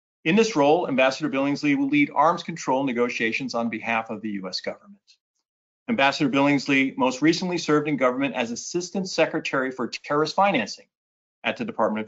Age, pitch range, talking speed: 50-69, 130-180 Hz, 165 wpm